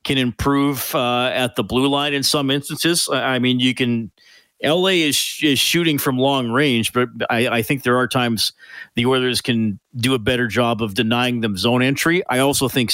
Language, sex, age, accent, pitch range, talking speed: English, male, 40-59, American, 115-140 Hz, 205 wpm